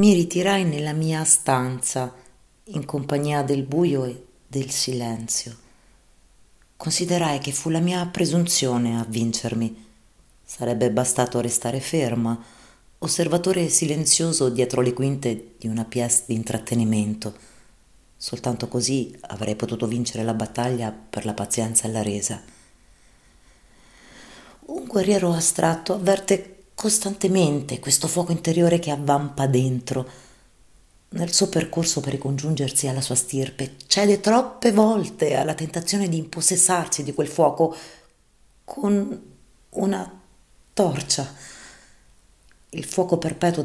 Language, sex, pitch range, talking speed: Italian, female, 125-170 Hz, 115 wpm